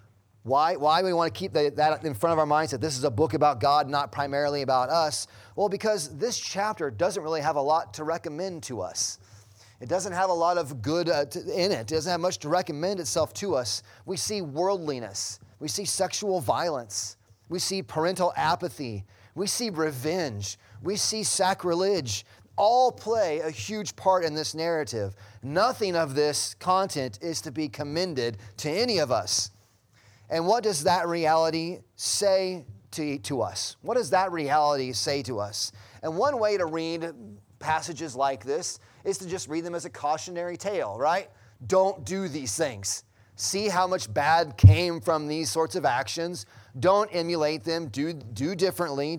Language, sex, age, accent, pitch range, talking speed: English, male, 30-49, American, 115-180 Hz, 180 wpm